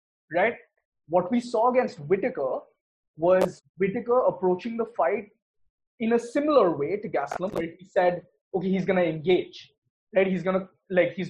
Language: English